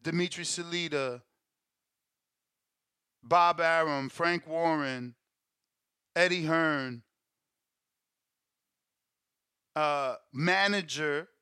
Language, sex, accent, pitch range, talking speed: English, male, American, 145-175 Hz, 55 wpm